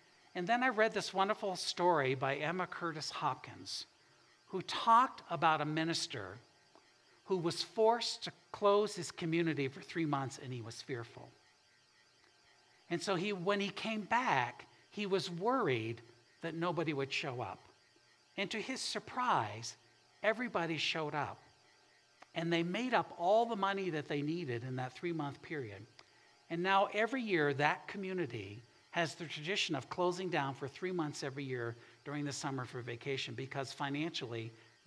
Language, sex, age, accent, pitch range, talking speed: English, male, 60-79, American, 135-180 Hz, 155 wpm